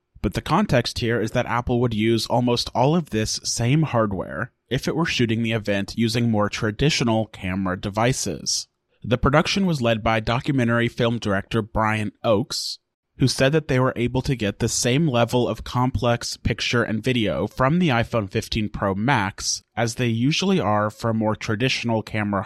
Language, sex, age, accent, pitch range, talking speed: English, male, 30-49, American, 110-130 Hz, 175 wpm